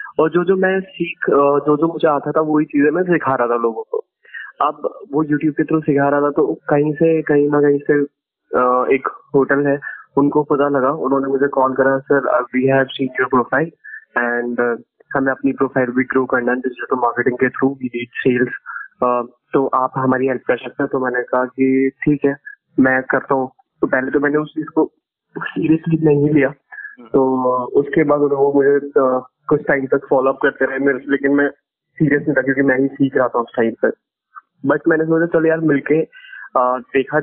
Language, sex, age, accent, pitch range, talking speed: Hindi, male, 20-39, native, 130-150 Hz, 105 wpm